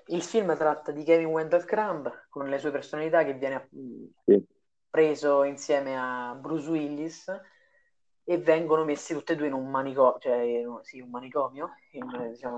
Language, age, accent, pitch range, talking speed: Italian, 30-49, native, 130-155 Hz, 140 wpm